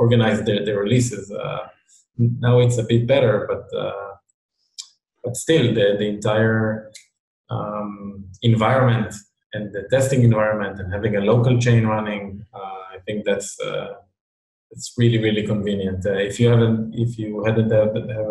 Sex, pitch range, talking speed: male, 105-120 Hz, 155 wpm